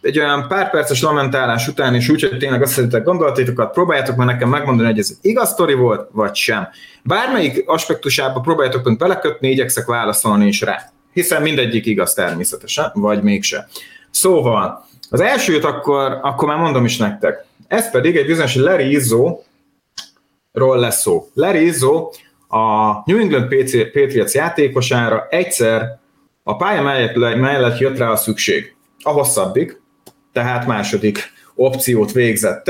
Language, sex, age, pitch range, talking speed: Hungarian, male, 30-49, 115-150 Hz, 135 wpm